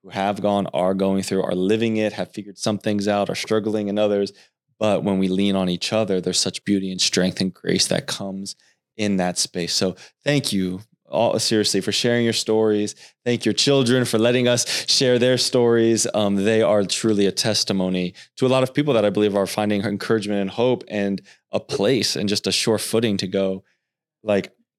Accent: American